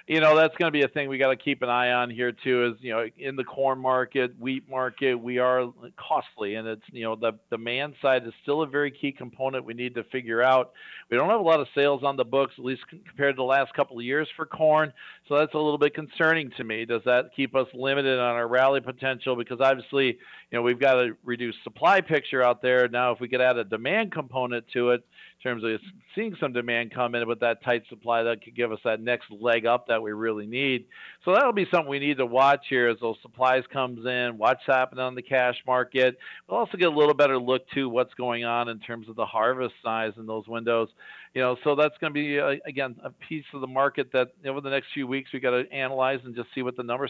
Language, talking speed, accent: English, 260 wpm, American